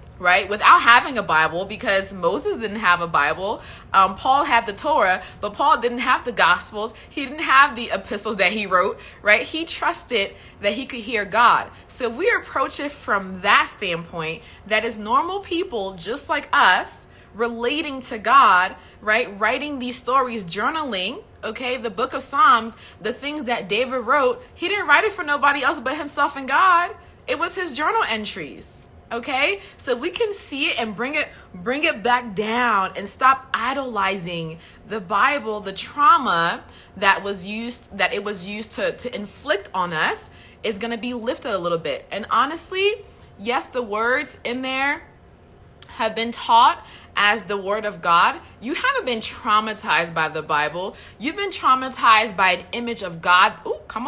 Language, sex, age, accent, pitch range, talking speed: English, female, 20-39, American, 195-275 Hz, 175 wpm